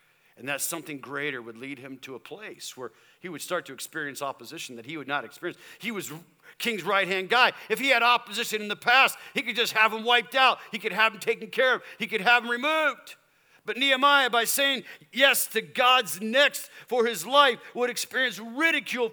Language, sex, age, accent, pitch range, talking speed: English, male, 50-69, American, 155-250 Hz, 210 wpm